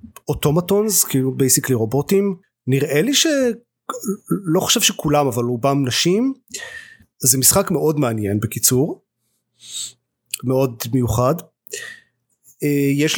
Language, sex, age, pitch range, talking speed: Hebrew, male, 30-49, 120-145 Hz, 90 wpm